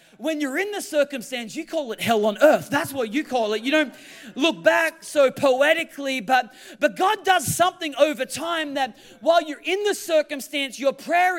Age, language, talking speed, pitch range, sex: 30-49, English, 195 wpm, 270-340 Hz, male